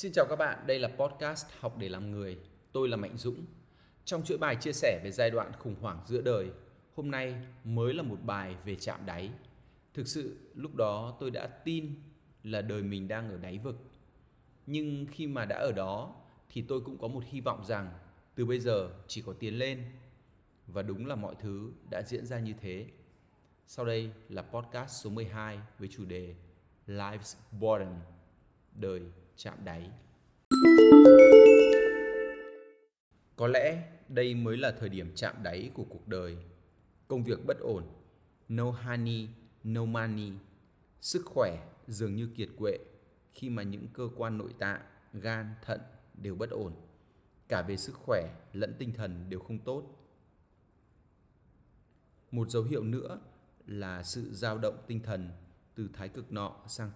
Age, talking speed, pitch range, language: 20-39, 165 wpm, 100-125 Hz, Vietnamese